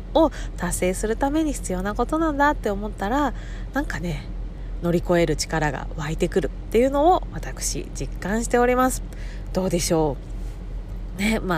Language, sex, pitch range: Japanese, female, 160-235 Hz